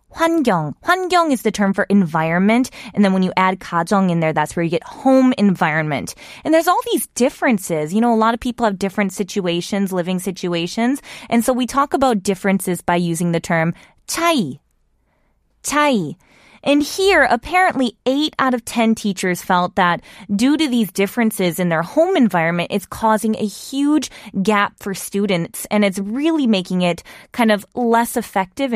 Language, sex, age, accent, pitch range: Korean, female, 20-39, American, 185-245 Hz